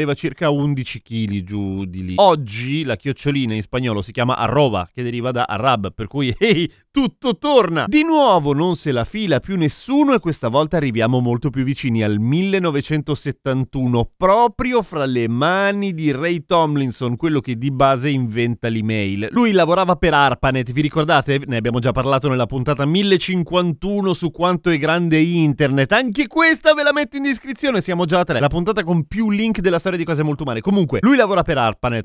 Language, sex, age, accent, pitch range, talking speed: Italian, male, 30-49, native, 125-180 Hz, 185 wpm